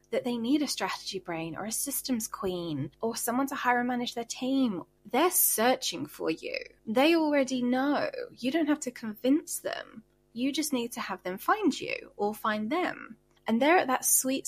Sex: female